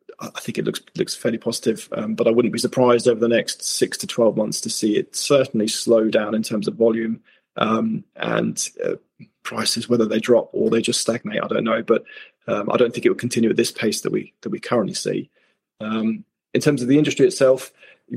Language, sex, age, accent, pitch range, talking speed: English, male, 20-39, British, 115-125 Hz, 230 wpm